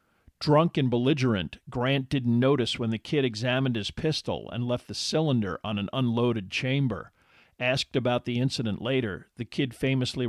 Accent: American